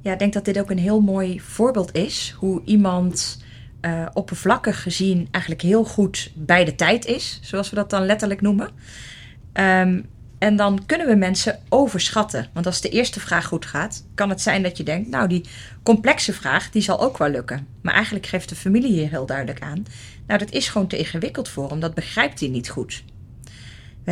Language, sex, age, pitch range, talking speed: Dutch, female, 30-49, 155-205 Hz, 200 wpm